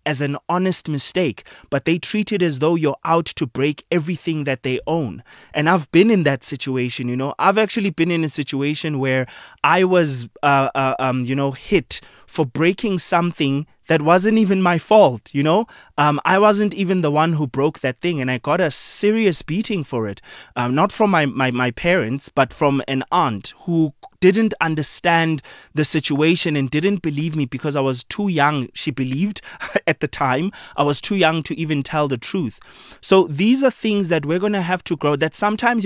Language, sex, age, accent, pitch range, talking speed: English, male, 20-39, South African, 140-185 Hz, 205 wpm